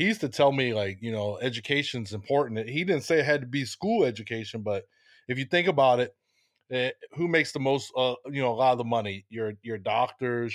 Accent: American